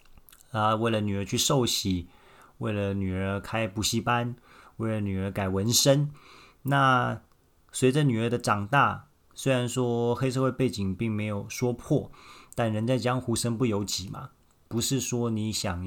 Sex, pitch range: male, 100-120 Hz